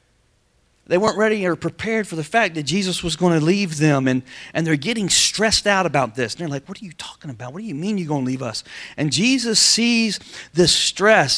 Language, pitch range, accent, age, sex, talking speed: English, 135-180 Hz, American, 40-59, male, 235 wpm